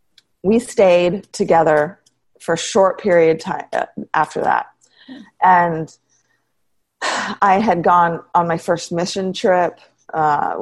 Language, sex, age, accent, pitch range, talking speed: English, female, 30-49, American, 155-180 Hz, 115 wpm